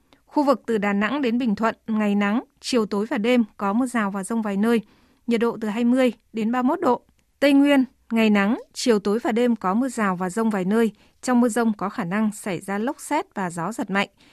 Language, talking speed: Vietnamese, 240 wpm